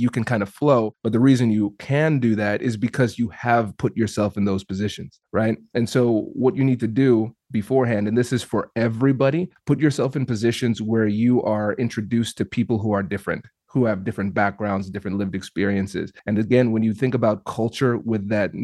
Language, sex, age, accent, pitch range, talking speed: English, male, 30-49, American, 105-125 Hz, 205 wpm